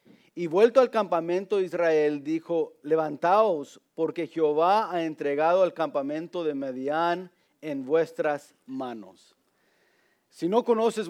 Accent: Mexican